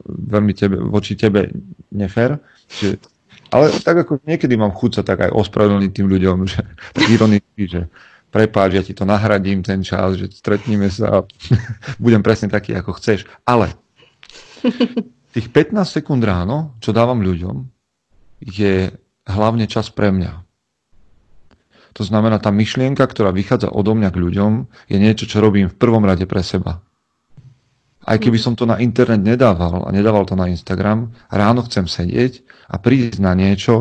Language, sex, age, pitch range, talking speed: Slovak, male, 40-59, 95-115 Hz, 155 wpm